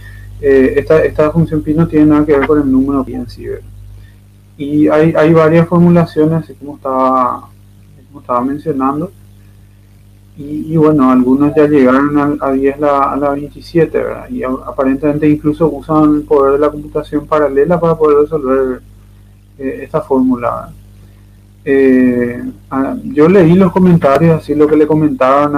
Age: 20-39